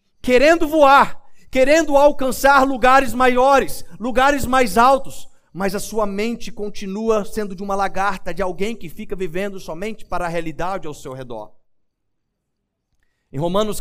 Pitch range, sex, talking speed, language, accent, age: 190-240 Hz, male, 140 wpm, Portuguese, Brazilian, 50-69